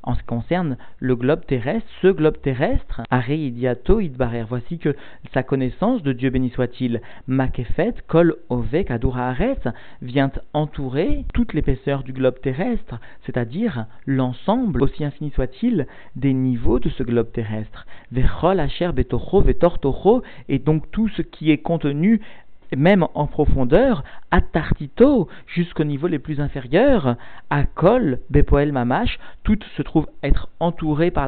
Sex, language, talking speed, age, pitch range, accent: male, French, 140 wpm, 50-69, 130-175 Hz, French